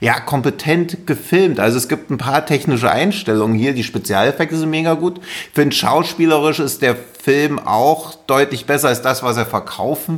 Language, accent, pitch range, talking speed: German, German, 120-155 Hz, 175 wpm